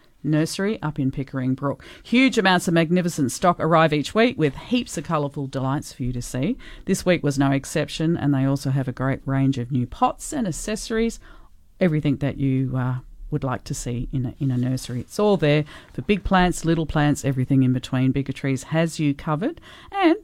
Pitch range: 135-185 Hz